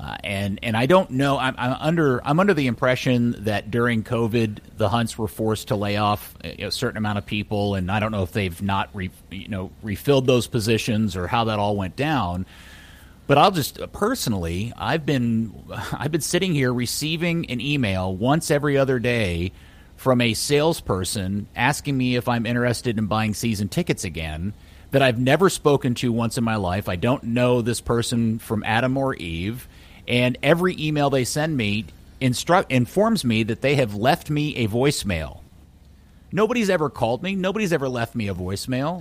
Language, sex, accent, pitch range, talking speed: English, male, American, 105-155 Hz, 185 wpm